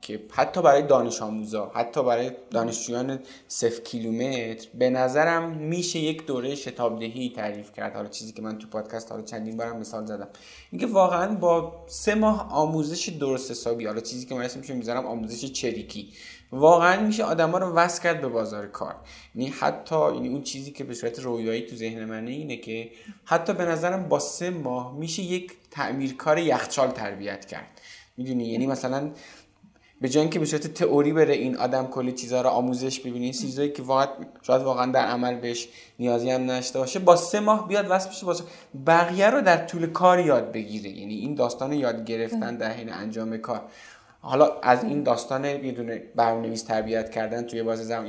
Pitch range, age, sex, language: 115-165 Hz, 20-39, male, Persian